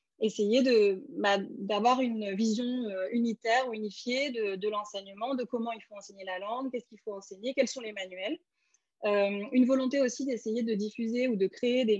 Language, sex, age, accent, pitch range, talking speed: French, female, 20-39, French, 200-250 Hz, 190 wpm